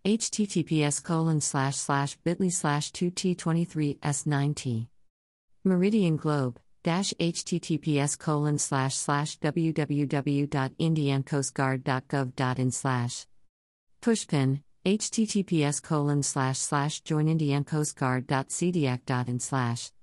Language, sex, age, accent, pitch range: Hindi, female, 50-69, American, 130-170 Hz